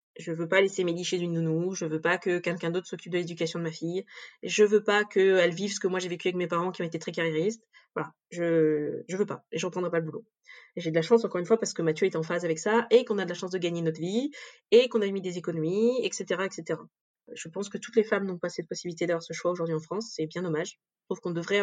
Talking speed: 295 wpm